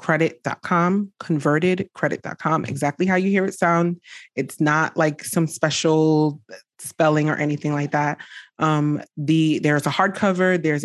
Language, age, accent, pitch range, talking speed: English, 30-49, American, 145-170 Hz, 140 wpm